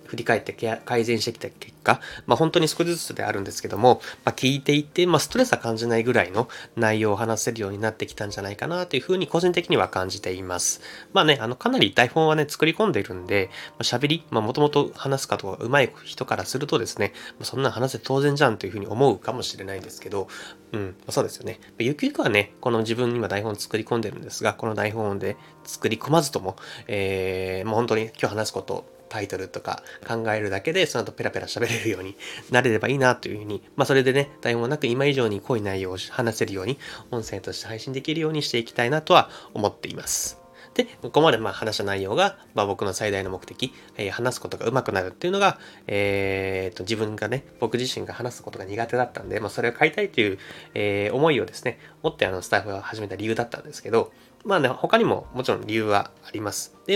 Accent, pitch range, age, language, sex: native, 100-140 Hz, 20-39, Japanese, male